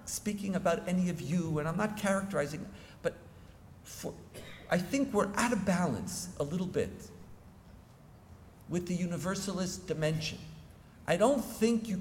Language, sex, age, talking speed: English, male, 50-69, 135 wpm